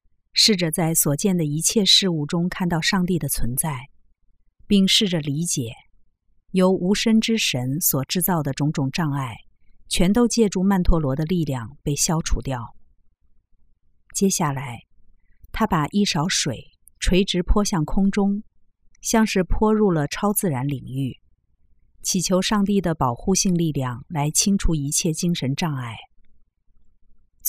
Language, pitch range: Chinese, 130-190 Hz